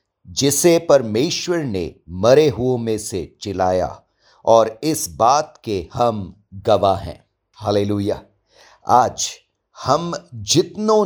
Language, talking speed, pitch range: English, 105 wpm, 100-140 Hz